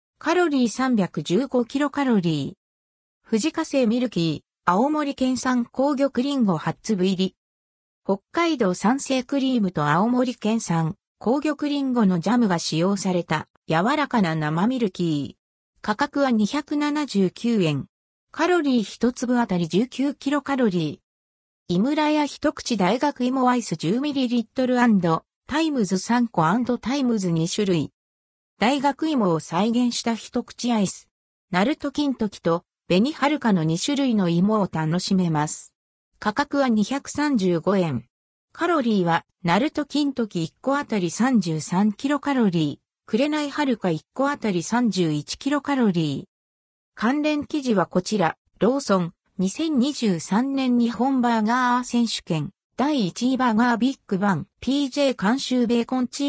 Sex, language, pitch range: female, Japanese, 175-265 Hz